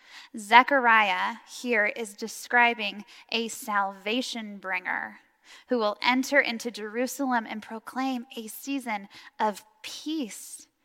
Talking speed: 100 wpm